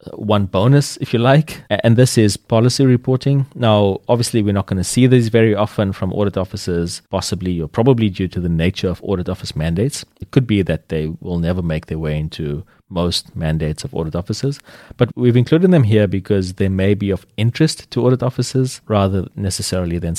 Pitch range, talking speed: 90-115 Hz, 200 wpm